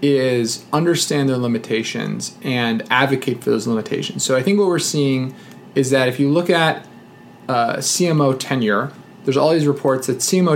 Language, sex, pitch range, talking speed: English, male, 130-175 Hz, 170 wpm